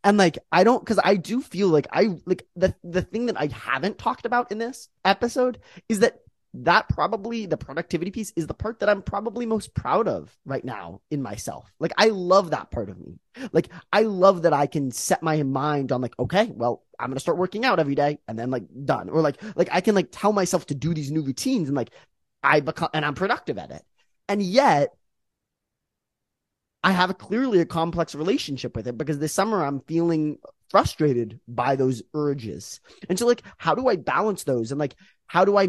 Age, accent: 20-39, American